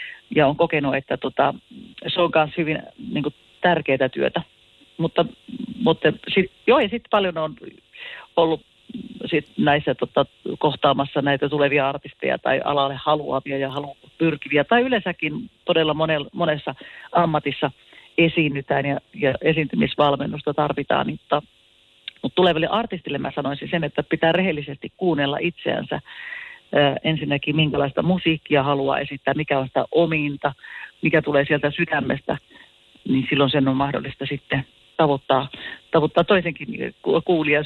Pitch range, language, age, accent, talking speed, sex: 140-180 Hz, Finnish, 40-59, native, 125 wpm, female